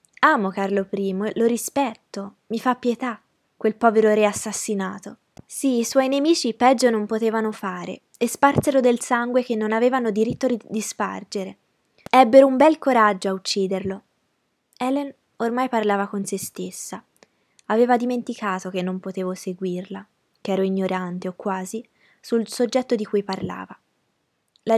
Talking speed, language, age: 145 wpm, Italian, 20-39